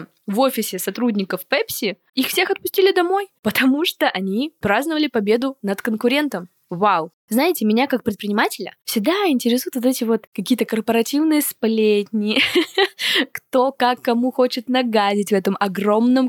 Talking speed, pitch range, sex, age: 135 wpm, 195-260 Hz, female, 10-29